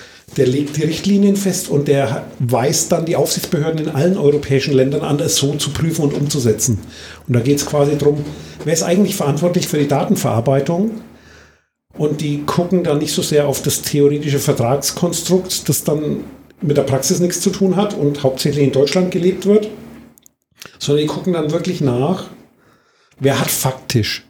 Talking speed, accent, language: 175 wpm, German, German